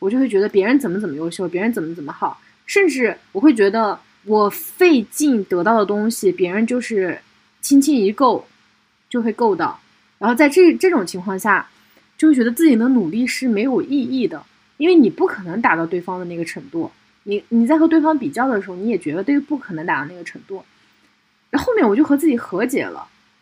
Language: Chinese